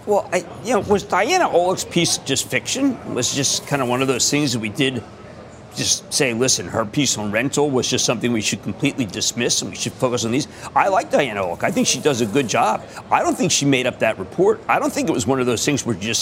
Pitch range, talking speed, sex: 115-150 Hz, 265 wpm, male